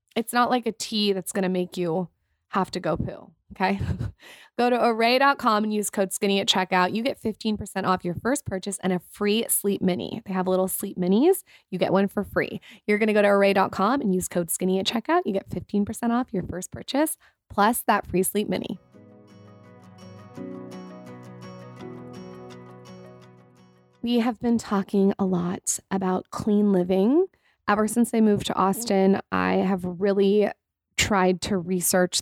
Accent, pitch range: American, 185-215 Hz